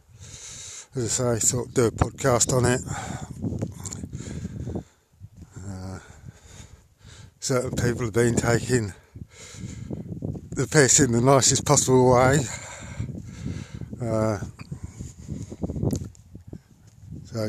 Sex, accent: male, British